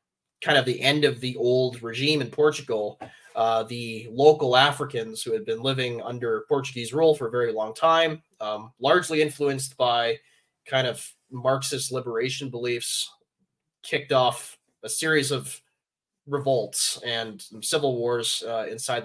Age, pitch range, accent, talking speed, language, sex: 20-39, 115-140 Hz, American, 145 wpm, English, male